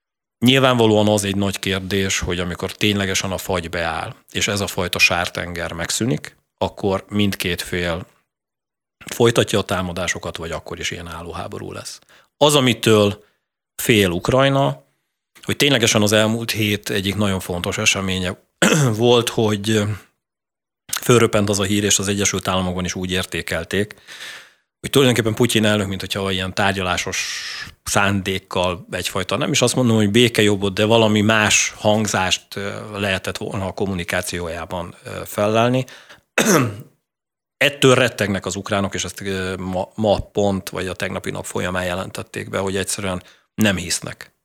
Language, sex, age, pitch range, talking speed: Hungarian, male, 30-49, 95-110 Hz, 135 wpm